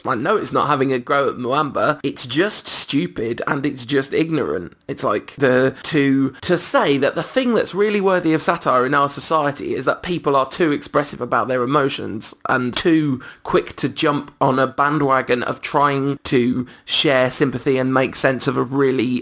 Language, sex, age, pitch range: English, male, 20-39, 125-155 Hz